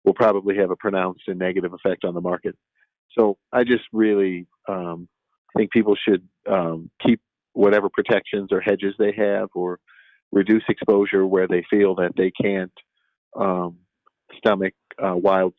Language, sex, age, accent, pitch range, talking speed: English, male, 40-59, American, 90-110 Hz, 155 wpm